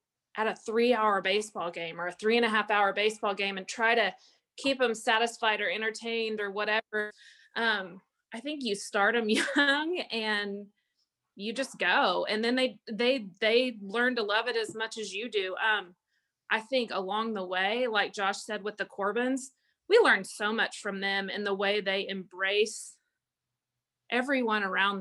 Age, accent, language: 30-49, American, English